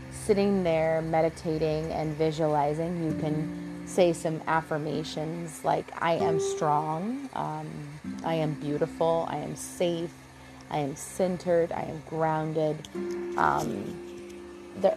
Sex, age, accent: female, 30-49, American